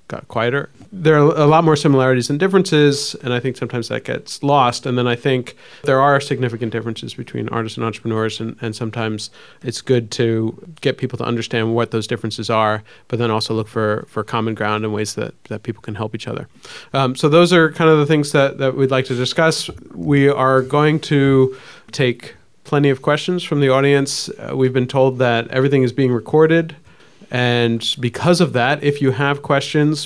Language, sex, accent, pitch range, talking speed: English, male, American, 115-145 Hz, 205 wpm